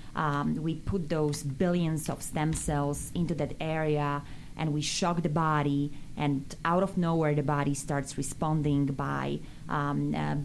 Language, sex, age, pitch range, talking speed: English, female, 20-39, 145-160 Hz, 155 wpm